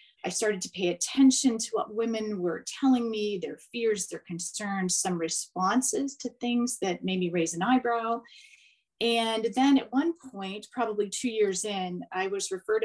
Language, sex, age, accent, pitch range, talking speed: English, female, 30-49, American, 180-235 Hz, 175 wpm